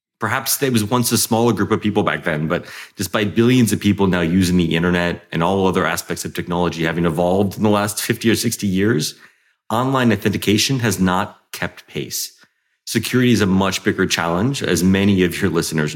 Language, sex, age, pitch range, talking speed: English, male, 30-49, 90-115 Hz, 195 wpm